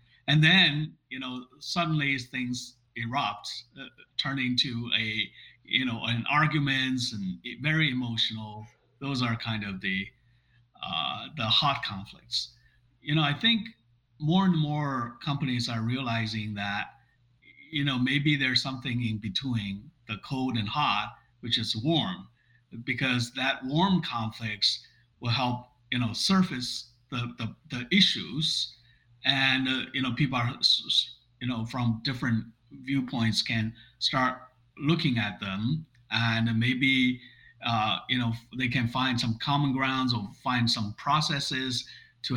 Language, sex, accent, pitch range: English, male, American, 115-135 Hz